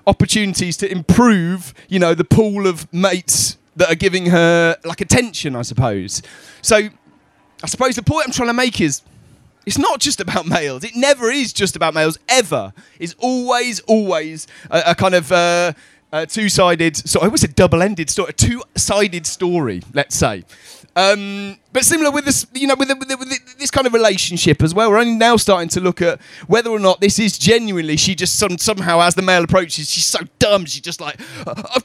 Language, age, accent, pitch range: English, 30-49, British, 165-220 Hz